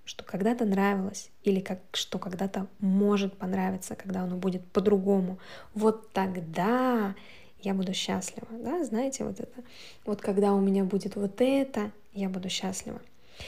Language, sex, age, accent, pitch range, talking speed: Russian, female, 20-39, native, 200-245 Hz, 140 wpm